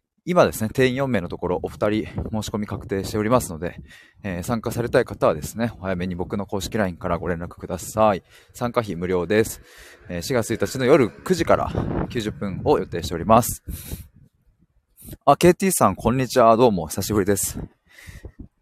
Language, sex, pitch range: Japanese, male, 95-125 Hz